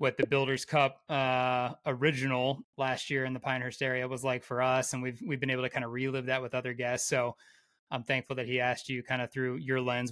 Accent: American